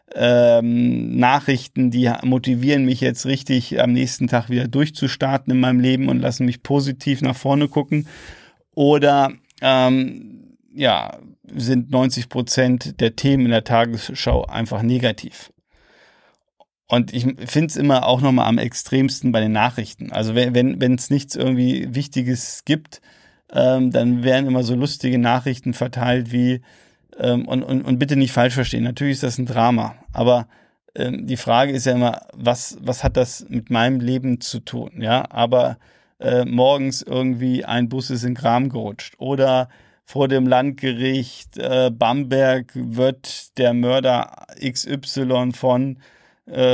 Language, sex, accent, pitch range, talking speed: German, male, German, 120-135 Hz, 145 wpm